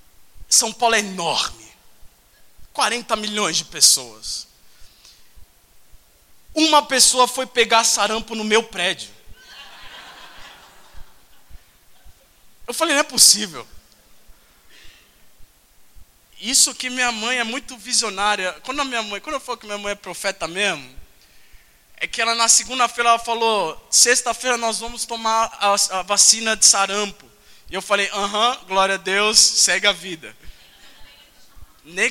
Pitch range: 190-240 Hz